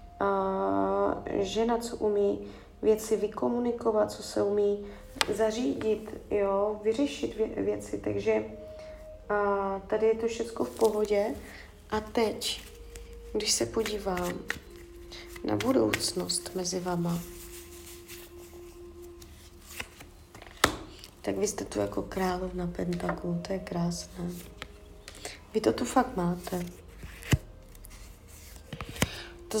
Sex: female